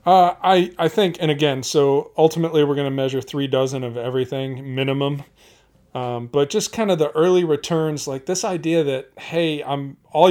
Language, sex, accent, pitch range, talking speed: English, male, American, 125-150 Hz, 185 wpm